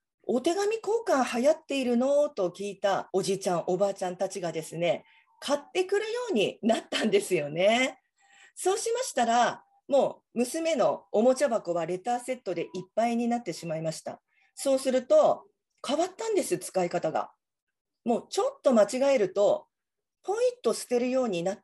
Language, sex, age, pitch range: Japanese, female, 40-59, 205-315 Hz